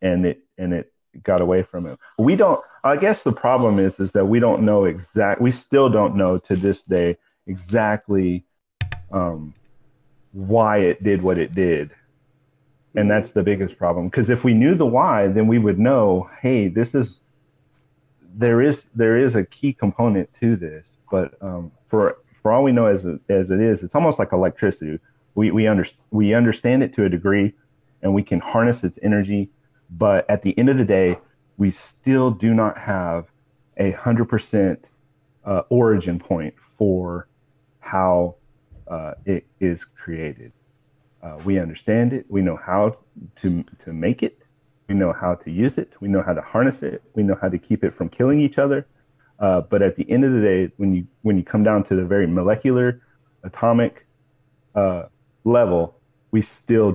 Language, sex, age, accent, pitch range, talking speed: English, male, 40-59, American, 95-125 Hz, 180 wpm